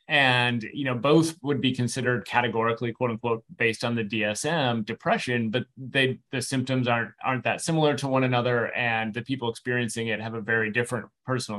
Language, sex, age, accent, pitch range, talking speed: English, male, 30-49, American, 110-130 Hz, 185 wpm